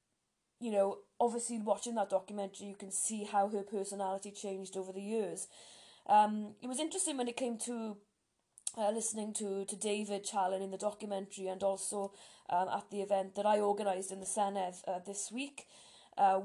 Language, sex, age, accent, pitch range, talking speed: English, female, 20-39, British, 190-215 Hz, 180 wpm